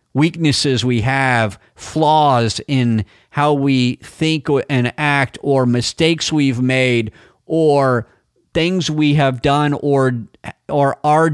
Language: English